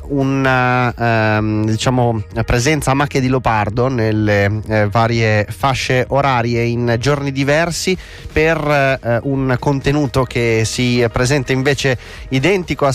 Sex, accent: male, native